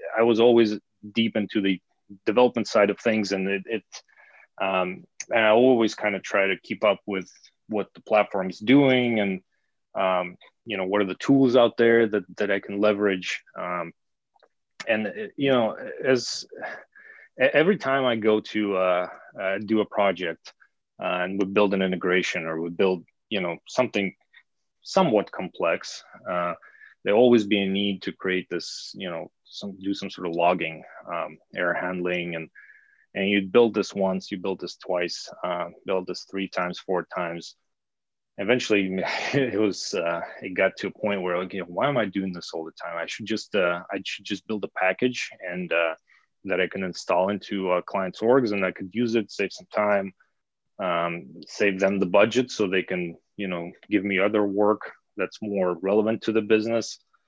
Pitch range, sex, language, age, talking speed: 95-110 Hz, male, English, 30-49, 190 wpm